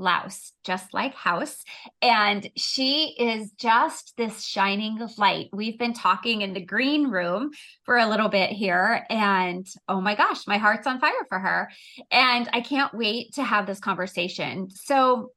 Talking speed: 165 wpm